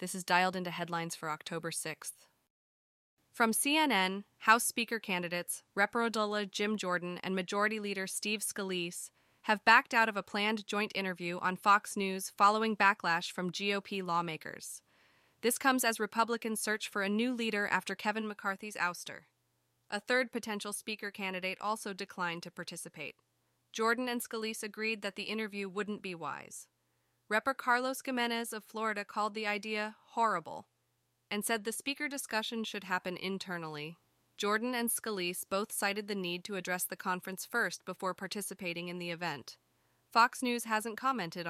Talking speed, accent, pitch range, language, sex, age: 155 wpm, American, 180-220 Hz, English, female, 30-49